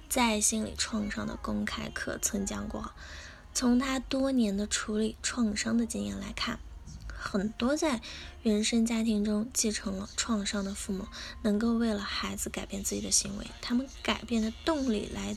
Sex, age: female, 10-29